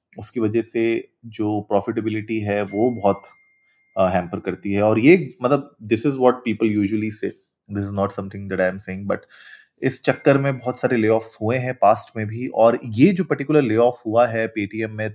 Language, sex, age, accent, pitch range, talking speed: Hindi, male, 30-49, native, 110-135 Hz, 195 wpm